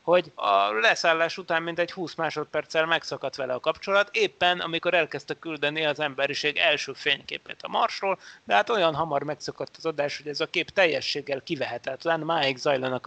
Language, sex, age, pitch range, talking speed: Hungarian, male, 30-49, 145-175 Hz, 165 wpm